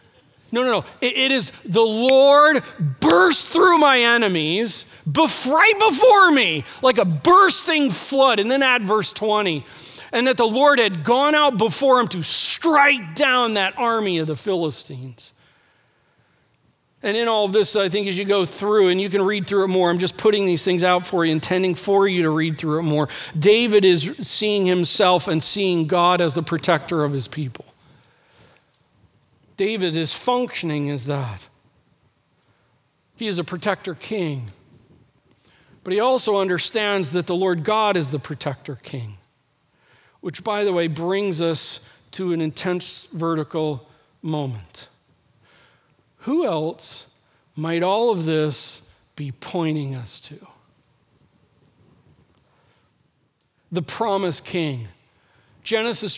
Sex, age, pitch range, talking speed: male, 40-59, 150-215 Hz, 145 wpm